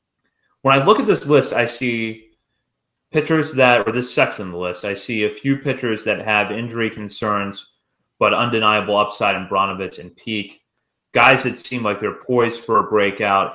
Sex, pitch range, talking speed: male, 105-120 Hz, 185 wpm